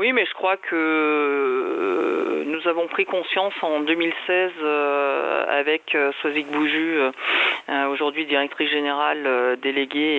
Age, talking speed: 40-59, 105 wpm